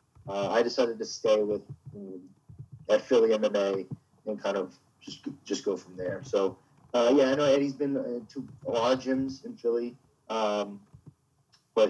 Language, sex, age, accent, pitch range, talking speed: English, male, 30-49, American, 100-135 Hz, 165 wpm